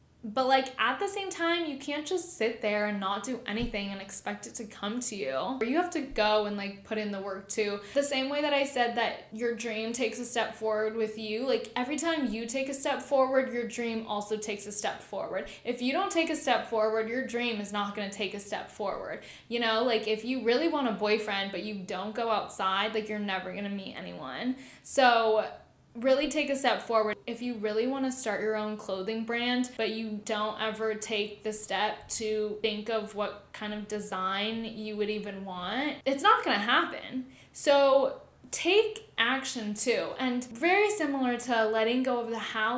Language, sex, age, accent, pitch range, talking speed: English, female, 10-29, American, 215-265 Hz, 215 wpm